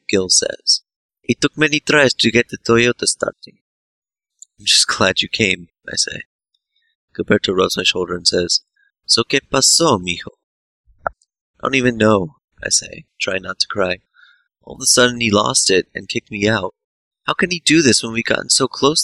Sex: male